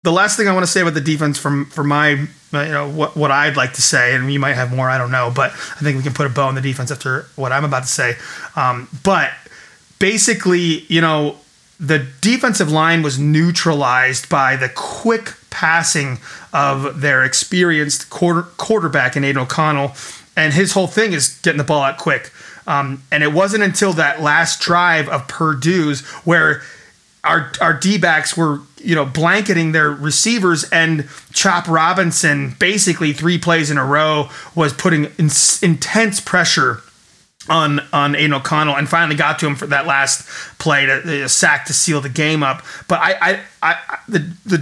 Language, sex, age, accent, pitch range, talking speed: English, male, 30-49, American, 140-175 Hz, 190 wpm